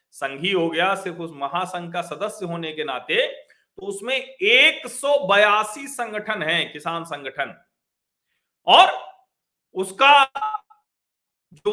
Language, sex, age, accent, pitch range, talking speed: Hindi, male, 40-59, native, 160-240 Hz, 105 wpm